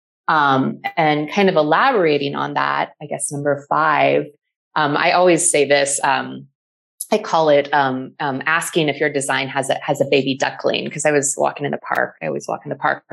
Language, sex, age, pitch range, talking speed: English, female, 30-49, 140-180 Hz, 210 wpm